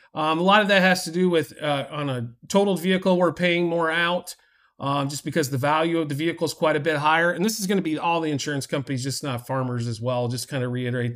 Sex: male